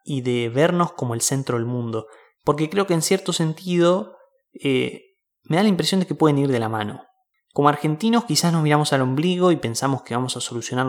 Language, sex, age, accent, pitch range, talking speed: Spanish, male, 20-39, Argentinian, 125-175 Hz, 215 wpm